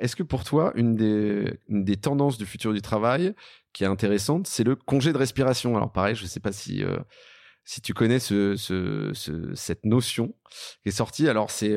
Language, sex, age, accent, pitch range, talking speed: French, male, 30-49, French, 105-135 Hz, 215 wpm